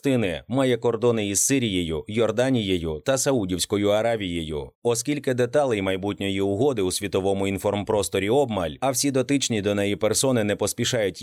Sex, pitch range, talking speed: male, 100-130 Hz, 130 wpm